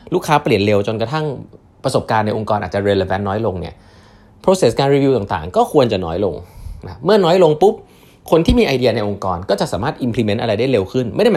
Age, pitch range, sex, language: 20-39, 100-135 Hz, male, Thai